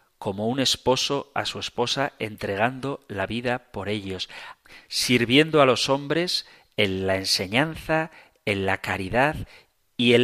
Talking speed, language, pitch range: 135 wpm, Spanish, 100-130 Hz